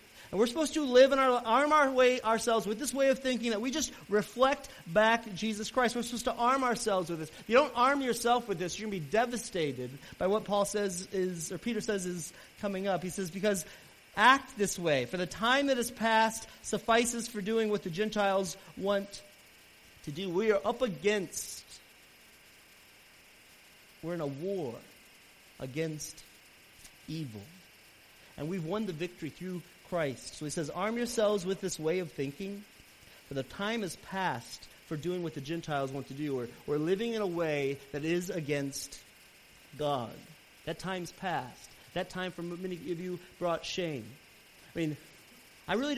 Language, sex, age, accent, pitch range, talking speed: English, male, 40-59, American, 160-225 Hz, 180 wpm